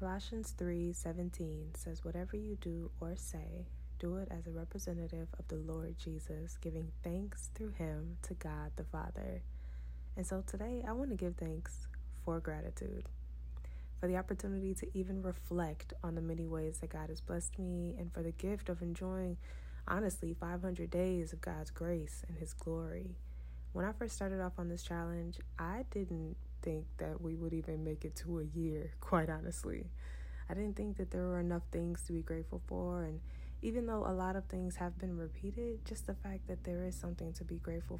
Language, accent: English, American